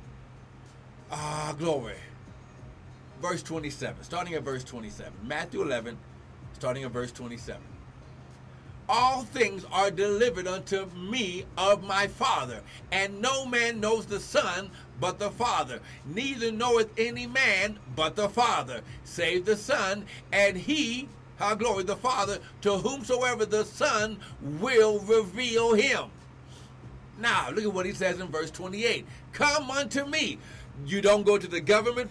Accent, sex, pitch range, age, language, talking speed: American, male, 190-250 Hz, 60-79, English, 135 wpm